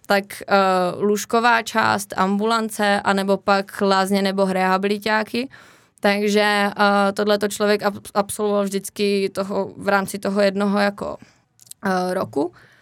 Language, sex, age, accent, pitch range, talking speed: Czech, female, 20-39, native, 200-210 Hz, 110 wpm